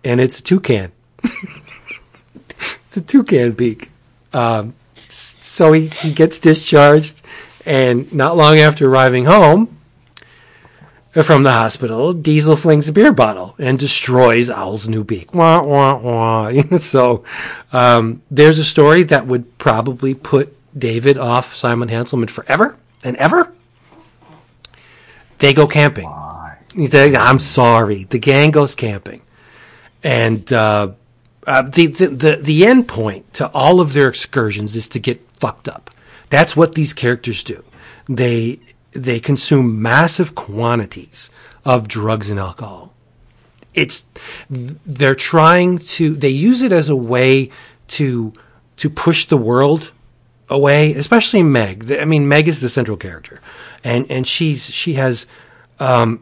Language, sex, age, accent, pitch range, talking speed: English, male, 40-59, American, 120-150 Hz, 135 wpm